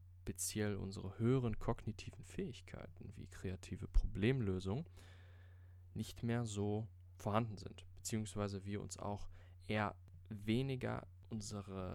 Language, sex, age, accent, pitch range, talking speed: German, male, 20-39, German, 90-105 Hz, 100 wpm